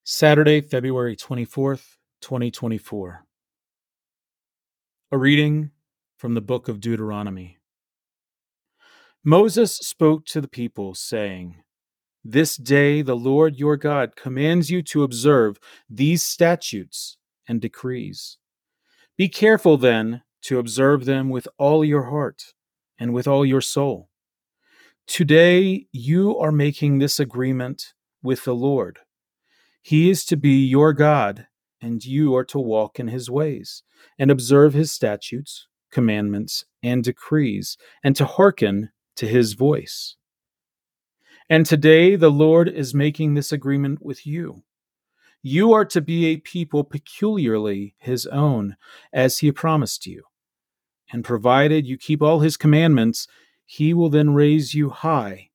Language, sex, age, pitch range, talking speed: English, male, 40-59, 120-155 Hz, 125 wpm